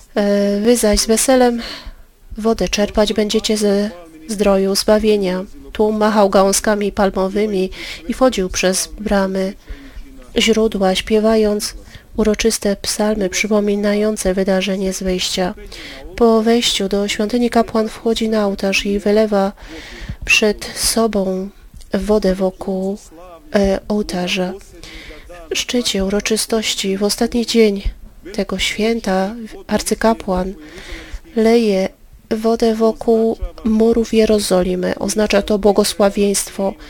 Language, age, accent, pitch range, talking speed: Polish, 30-49, native, 195-220 Hz, 95 wpm